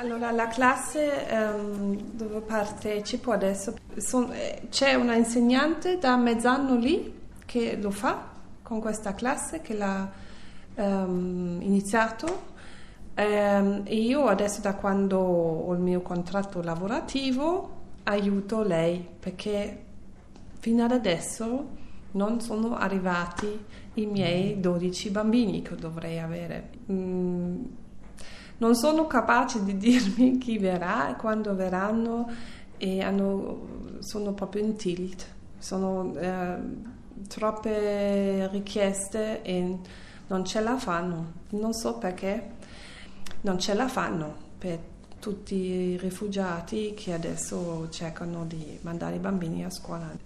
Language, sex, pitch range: Italian, female, 185-235 Hz